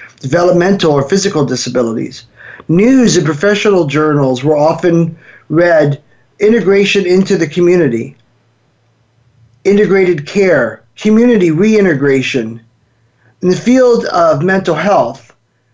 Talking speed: 95 wpm